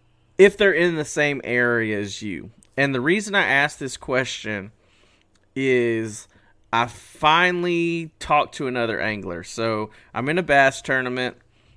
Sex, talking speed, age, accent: male, 145 wpm, 30-49, American